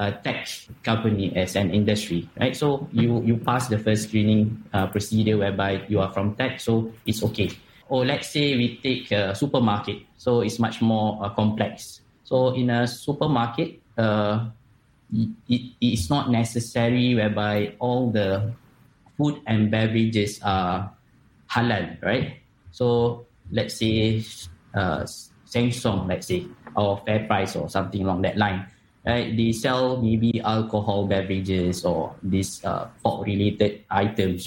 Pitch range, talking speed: 100-120 Hz, 145 wpm